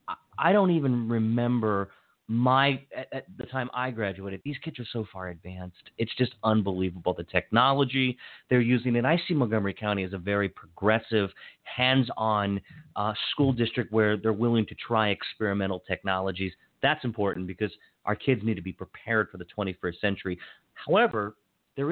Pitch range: 100-130 Hz